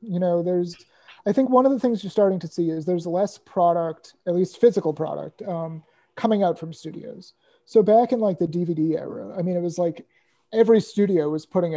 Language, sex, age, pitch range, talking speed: English, male, 30-49, 165-200 Hz, 215 wpm